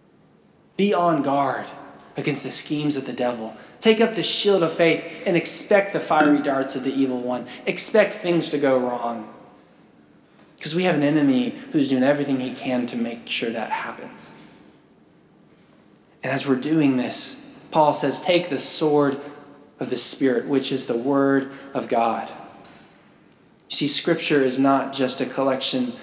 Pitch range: 135-200 Hz